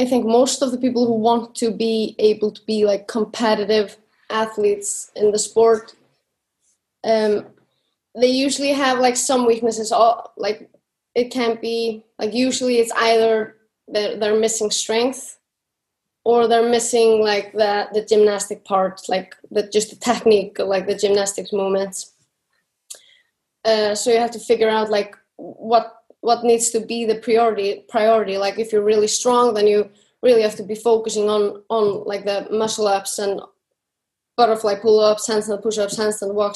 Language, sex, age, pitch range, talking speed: German, female, 20-39, 210-230 Hz, 165 wpm